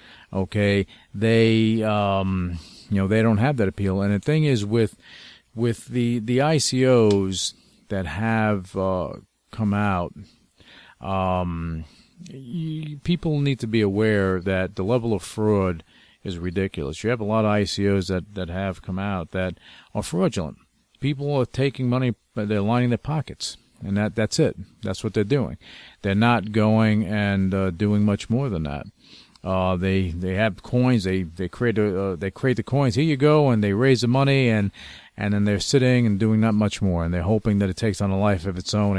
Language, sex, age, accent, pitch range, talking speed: English, male, 50-69, American, 95-120 Hz, 190 wpm